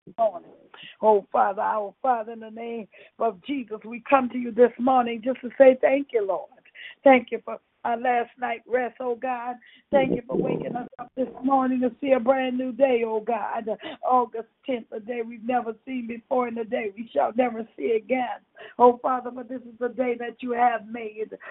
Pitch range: 230-275 Hz